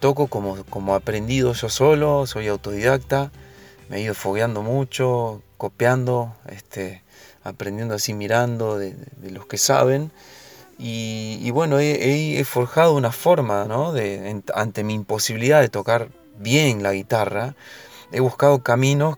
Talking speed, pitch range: 140 wpm, 105-135 Hz